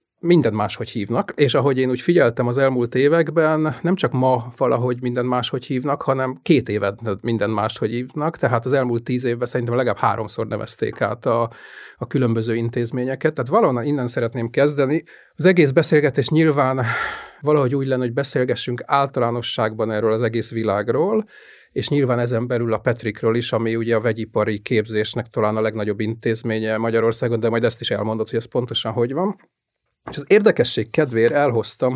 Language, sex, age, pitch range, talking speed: Hungarian, male, 30-49, 115-145 Hz, 165 wpm